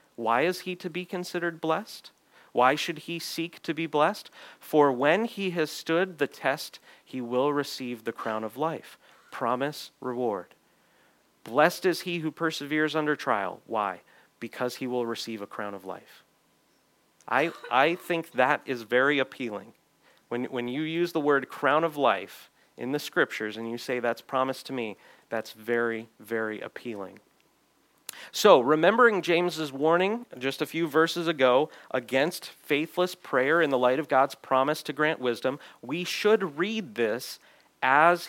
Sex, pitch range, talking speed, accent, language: male, 125-165 Hz, 160 wpm, American, English